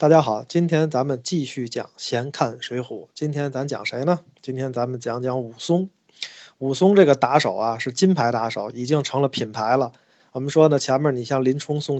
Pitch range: 125-155 Hz